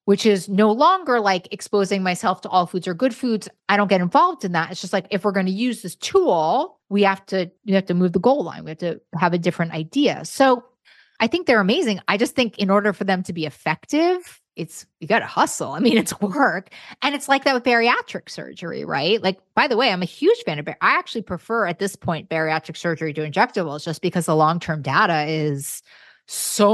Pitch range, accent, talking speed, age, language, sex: 160-210 Hz, American, 235 wpm, 20-39, English, female